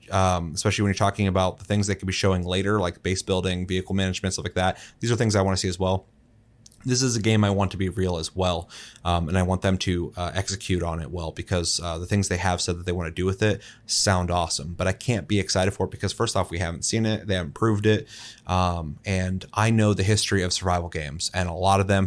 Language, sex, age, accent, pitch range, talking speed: English, male, 30-49, American, 90-105 Hz, 270 wpm